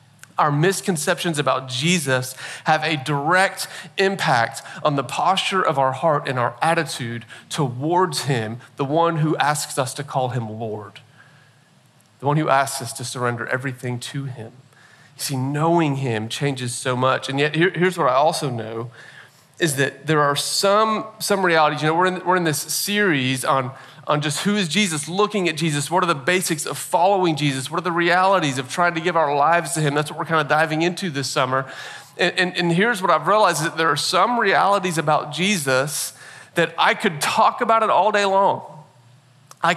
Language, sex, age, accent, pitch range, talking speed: English, male, 40-59, American, 135-185 Hz, 190 wpm